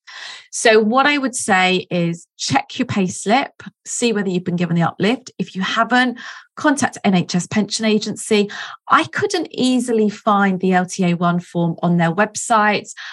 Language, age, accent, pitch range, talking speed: English, 30-49, British, 175-220 Hz, 150 wpm